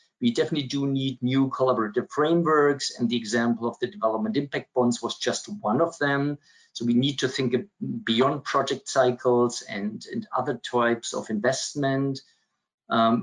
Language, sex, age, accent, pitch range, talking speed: English, male, 50-69, German, 120-145 Hz, 160 wpm